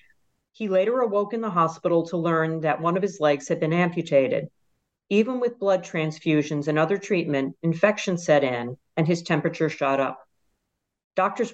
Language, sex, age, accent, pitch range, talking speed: English, female, 50-69, American, 145-200 Hz, 165 wpm